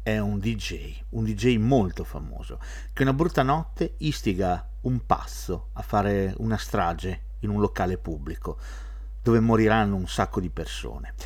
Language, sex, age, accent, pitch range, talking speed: Italian, male, 50-69, native, 80-115 Hz, 150 wpm